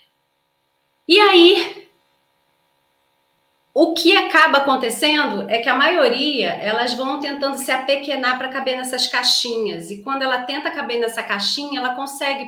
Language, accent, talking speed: Portuguese, Brazilian, 135 wpm